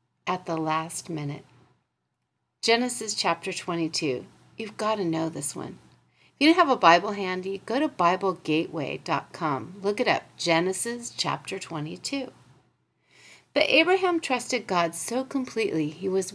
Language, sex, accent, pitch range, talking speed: English, female, American, 170-260 Hz, 135 wpm